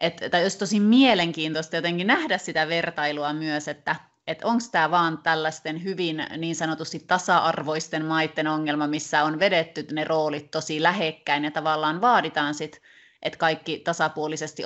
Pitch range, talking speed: 155-195 Hz, 140 wpm